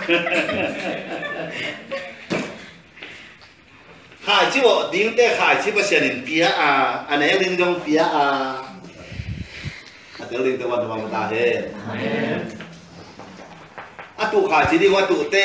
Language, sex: English, male